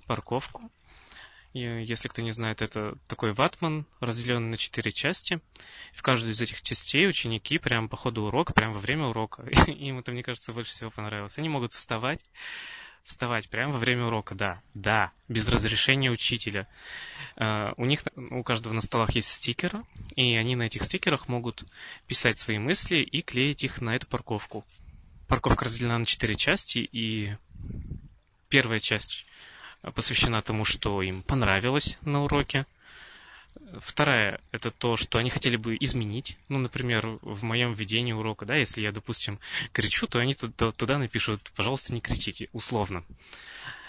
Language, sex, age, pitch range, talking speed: Russian, male, 20-39, 110-130 Hz, 155 wpm